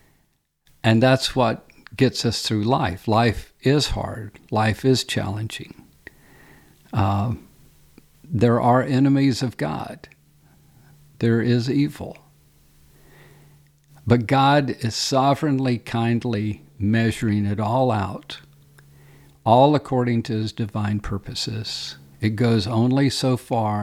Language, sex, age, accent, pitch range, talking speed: English, male, 50-69, American, 105-125 Hz, 105 wpm